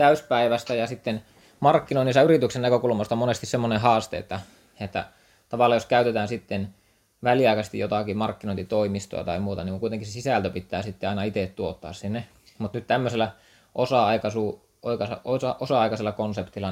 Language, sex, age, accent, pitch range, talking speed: Finnish, male, 20-39, native, 95-110 Hz, 135 wpm